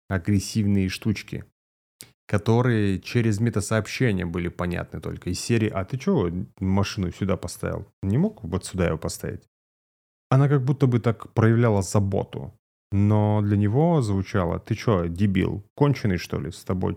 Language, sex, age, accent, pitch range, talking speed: Russian, male, 30-49, native, 95-110 Hz, 145 wpm